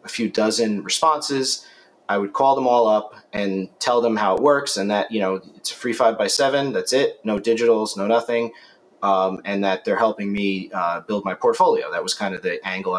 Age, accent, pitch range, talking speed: 30-49, American, 100-150 Hz, 220 wpm